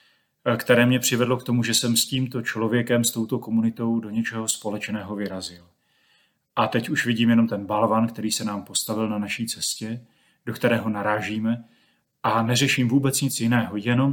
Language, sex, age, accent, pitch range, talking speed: Czech, male, 30-49, native, 110-125 Hz, 170 wpm